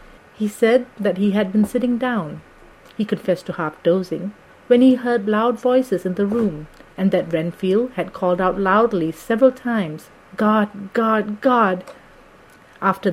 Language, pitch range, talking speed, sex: English, 185-230 Hz, 150 wpm, female